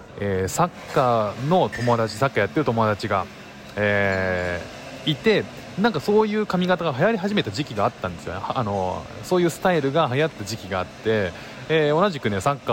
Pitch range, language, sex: 100-160 Hz, Japanese, male